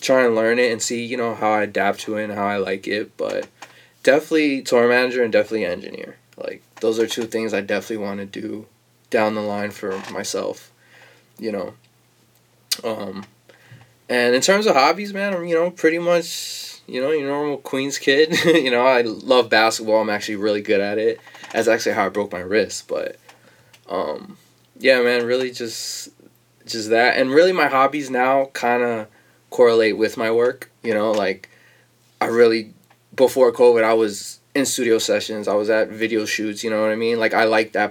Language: English